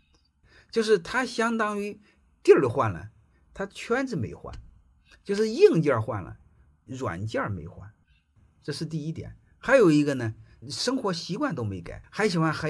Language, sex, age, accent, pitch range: Chinese, male, 50-69, native, 90-155 Hz